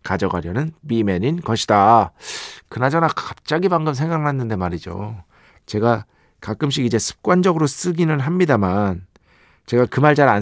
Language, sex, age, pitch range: Korean, male, 40-59, 110-165 Hz